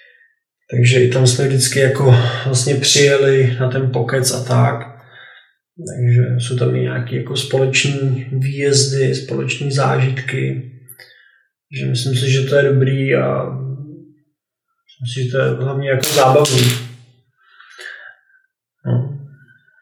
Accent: native